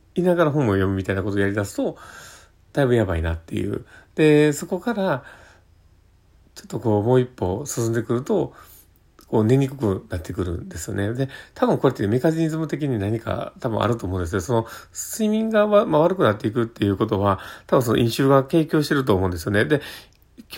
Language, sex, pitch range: Japanese, male, 100-160 Hz